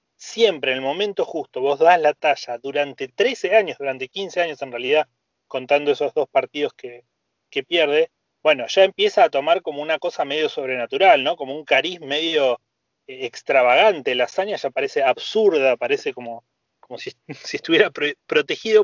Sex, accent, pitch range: male, Argentinian, 130-210 Hz